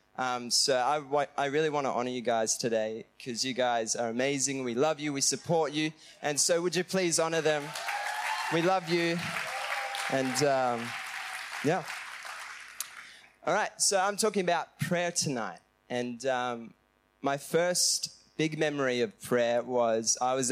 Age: 20-39